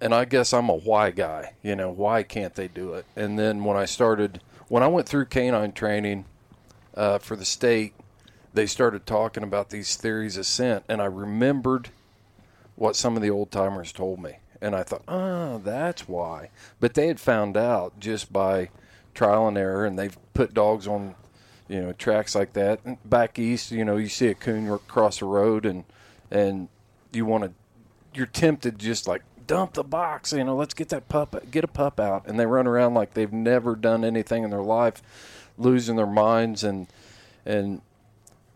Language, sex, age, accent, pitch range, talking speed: English, male, 40-59, American, 105-120 Hz, 195 wpm